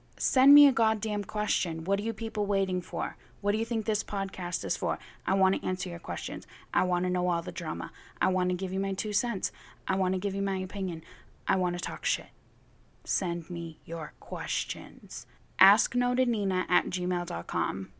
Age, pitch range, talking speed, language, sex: 20-39, 185-230 Hz, 195 wpm, English, female